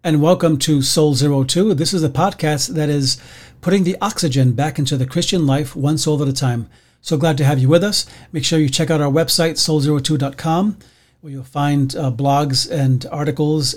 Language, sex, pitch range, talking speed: English, male, 125-155 Hz, 195 wpm